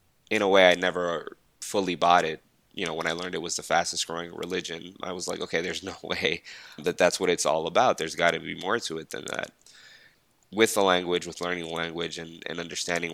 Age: 20-39